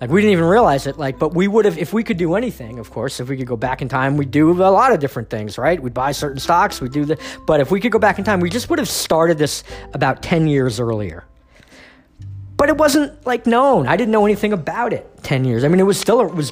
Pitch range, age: 125-180 Hz, 40-59